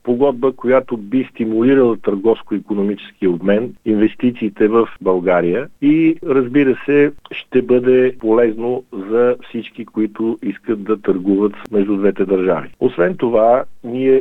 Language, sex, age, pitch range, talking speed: Bulgarian, male, 50-69, 100-120 Hz, 115 wpm